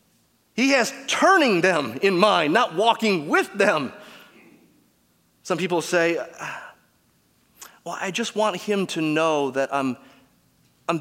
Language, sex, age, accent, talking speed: English, male, 30-49, American, 125 wpm